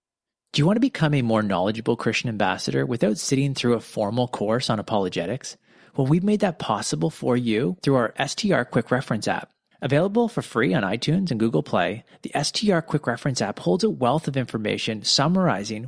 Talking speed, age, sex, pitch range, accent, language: 190 wpm, 30-49, male, 120-165 Hz, American, English